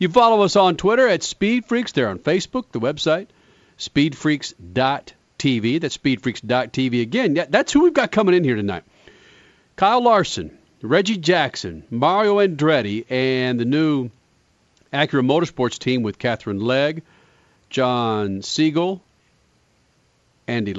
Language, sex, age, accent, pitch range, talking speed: English, male, 40-59, American, 115-155 Hz, 125 wpm